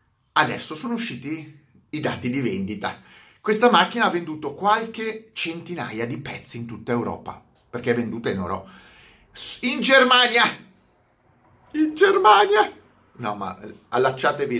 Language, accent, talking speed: Italian, native, 125 wpm